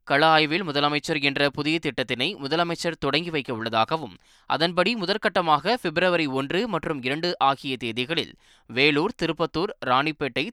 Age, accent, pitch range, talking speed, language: 20-39, native, 135-170 Hz, 120 wpm, Tamil